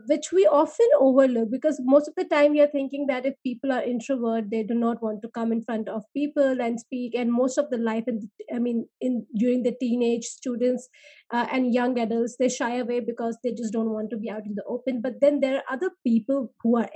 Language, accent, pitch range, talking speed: English, Indian, 235-280 Hz, 240 wpm